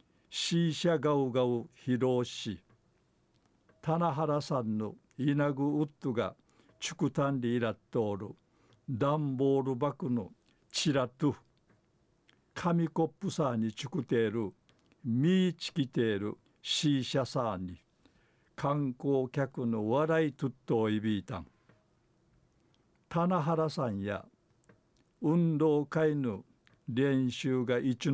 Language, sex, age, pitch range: Japanese, male, 60-79, 120-150 Hz